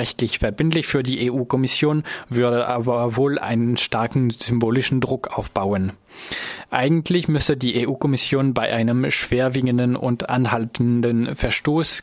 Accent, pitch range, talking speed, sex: German, 115-135 Hz, 115 wpm, male